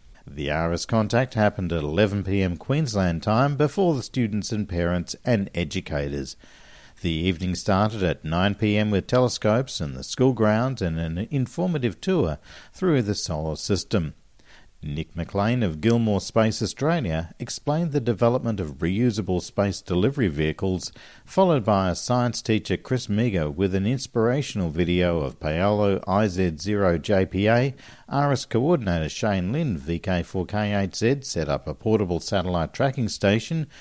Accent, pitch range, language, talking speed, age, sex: Australian, 85-120 Hz, English, 130 wpm, 50-69, male